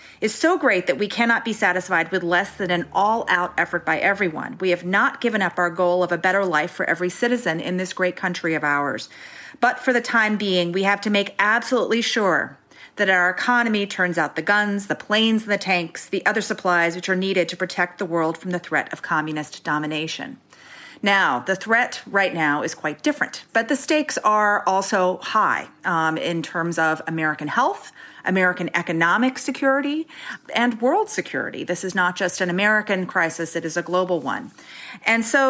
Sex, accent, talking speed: female, American, 195 wpm